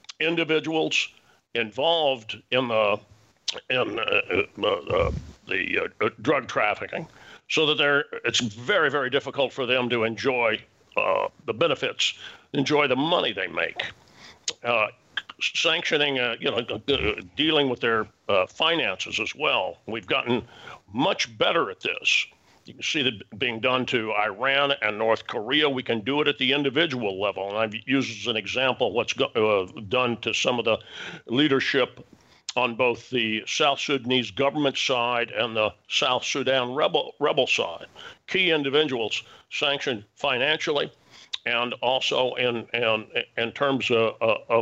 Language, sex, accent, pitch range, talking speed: English, male, American, 115-150 Hz, 145 wpm